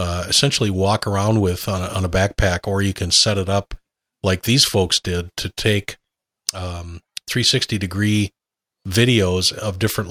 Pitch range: 95-110 Hz